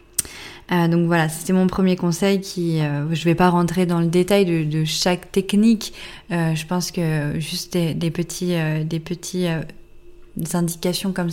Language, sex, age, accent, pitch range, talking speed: French, female, 20-39, French, 165-190 Hz, 165 wpm